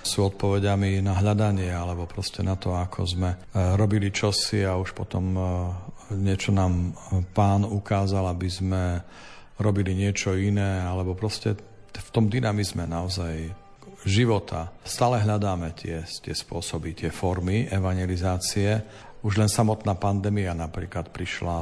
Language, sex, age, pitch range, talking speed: Slovak, male, 50-69, 90-105 Hz, 125 wpm